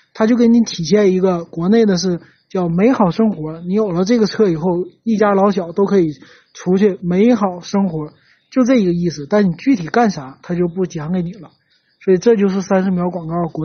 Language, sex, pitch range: Chinese, male, 175-215 Hz